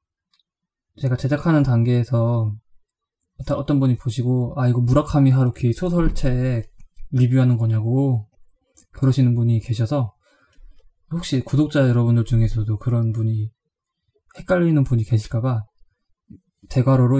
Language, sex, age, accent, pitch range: Korean, male, 20-39, native, 110-145 Hz